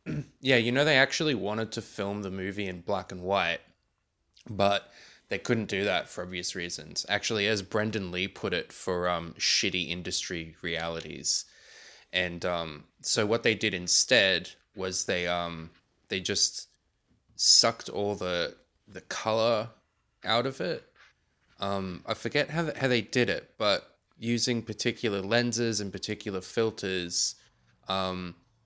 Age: 20-39